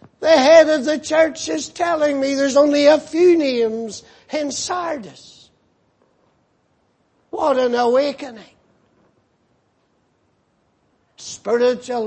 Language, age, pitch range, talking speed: English, 60-79, 235-275 Hz, 95 wpm